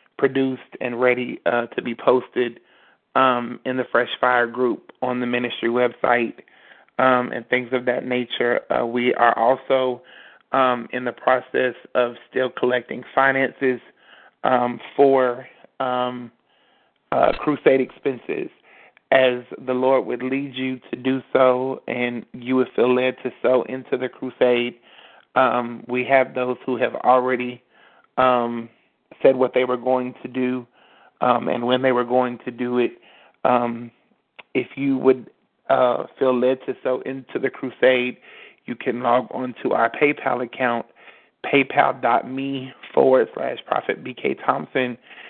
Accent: American